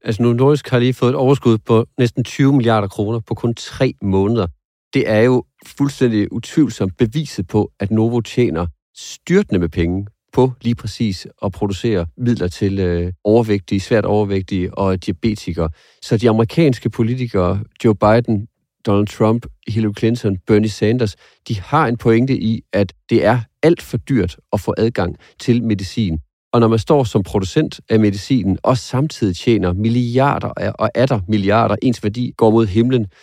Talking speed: 165 wpm